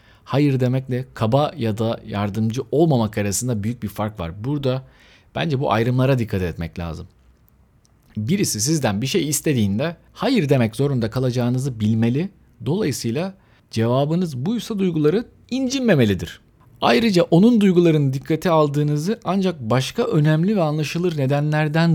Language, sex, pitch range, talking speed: Turkish, male, 100-140 Hz, 125 wpm